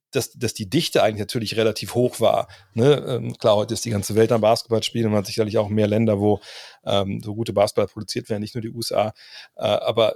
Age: 30-49